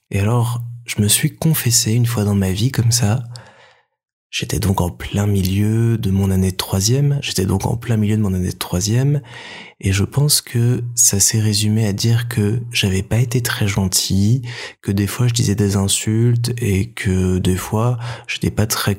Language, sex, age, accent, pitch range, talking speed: French, male, 20-39, French, 100-120 Hz, 195 wpm